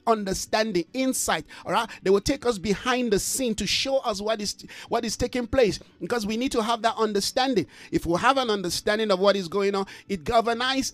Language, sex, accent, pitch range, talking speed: English, male, Nigerian, 185-235 Hz, 215 wpm